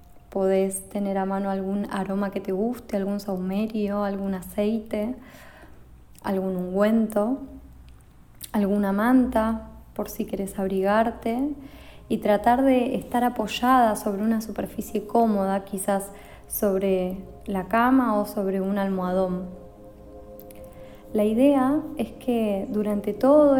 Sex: female